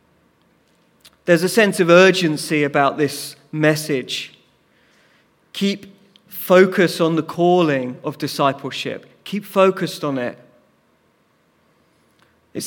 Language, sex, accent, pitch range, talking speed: English, male, British, 155-190 Hz, 95 wpm